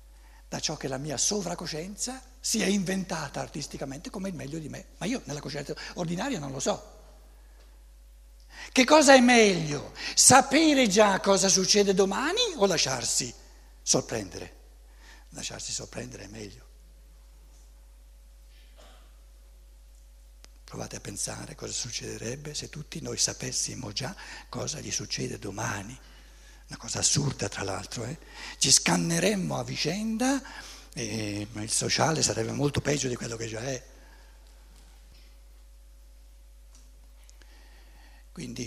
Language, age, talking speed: Italian, 60-79, 115 wpm